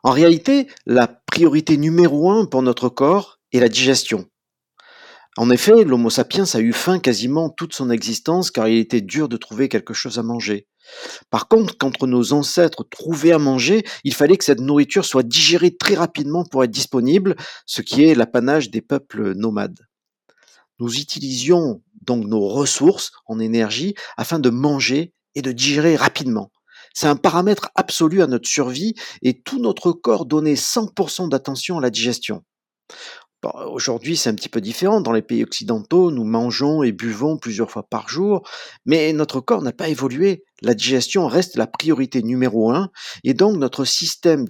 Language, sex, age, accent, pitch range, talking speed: French, male, 50-69, French, 125-185 Hz, 170 wpm